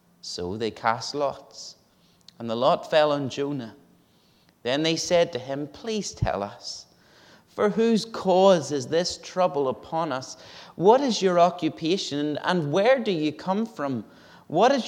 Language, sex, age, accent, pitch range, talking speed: English, male, 30-49, British, 120-170 Hz, 155 wpm